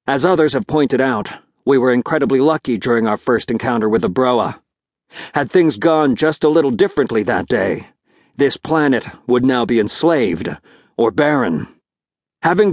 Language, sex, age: English, male, 50-69